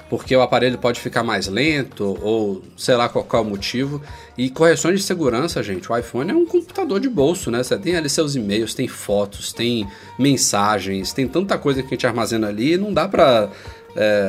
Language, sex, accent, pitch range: Portuguese, male, Brazilian, 110-150 Hz